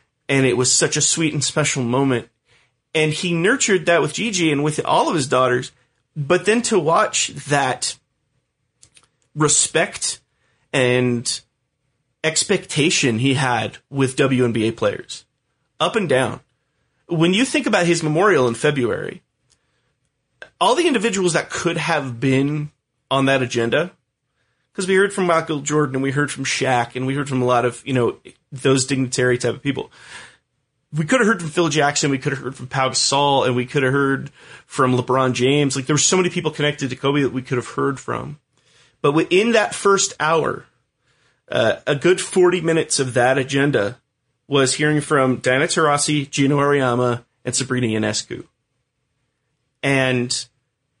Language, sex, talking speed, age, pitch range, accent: English, male, 165 wpm, 30-49, 125-155 Hz, American